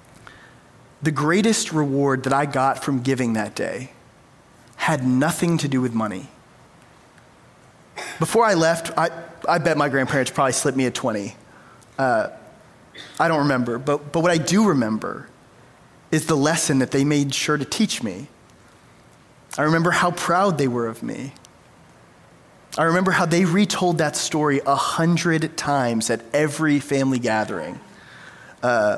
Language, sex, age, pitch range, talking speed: English, male, 20-39, 130-165 Hz, 150 wpm